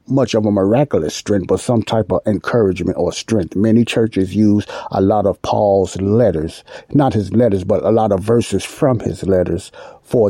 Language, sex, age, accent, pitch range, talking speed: English, male, 60-79, American, 100-120 Hz, 185 wpm